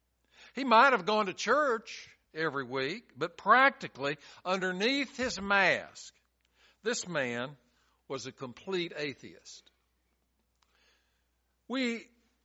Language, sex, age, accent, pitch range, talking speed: English, male, 60-79, American, 135-215 Hz, 95 wpm